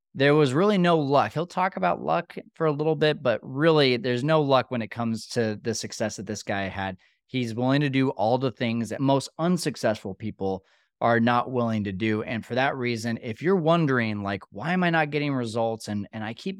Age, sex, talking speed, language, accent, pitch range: 20-39, male, 225 wpm, English, American, 110-140 Hz